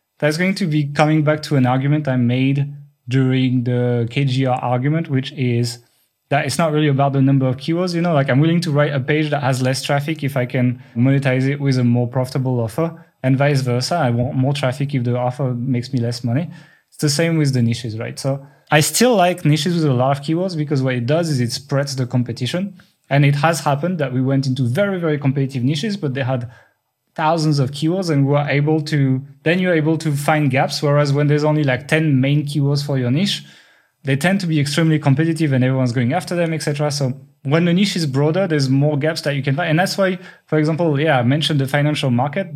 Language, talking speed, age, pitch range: English, 230 wpm, 20-39, 130-155 Hz